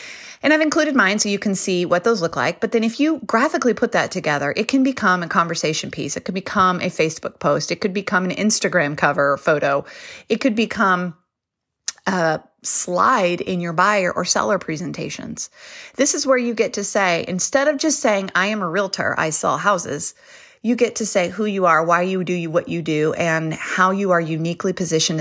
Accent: American